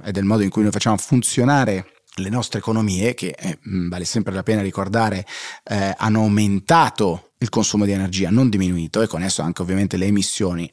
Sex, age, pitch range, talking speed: male, 30-49, 100-120 Hz, 190 wpm